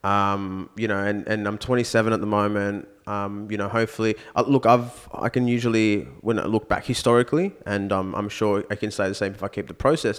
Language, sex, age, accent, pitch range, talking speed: English, male, 20-39, Australian, 105-140 Hz, 225 wpm